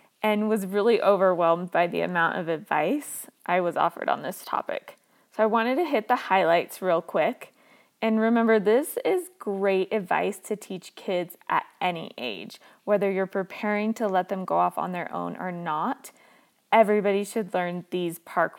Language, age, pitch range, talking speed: English, 20-39, 185-230 Hz, 175 wpm